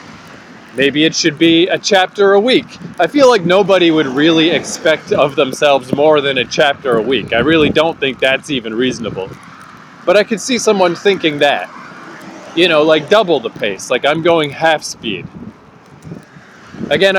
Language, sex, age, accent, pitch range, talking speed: English, male, 30-49, American, 140-185 Hz, 170 wpm